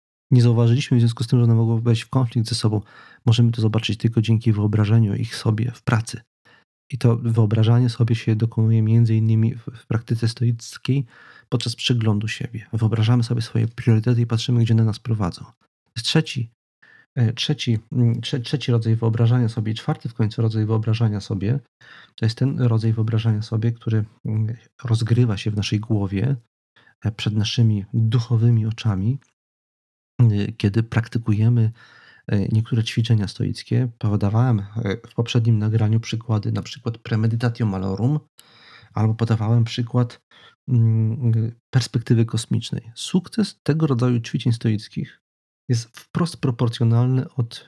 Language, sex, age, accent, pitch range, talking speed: Polish, male, 40-59, native, 110-125 Hz, 135 wpm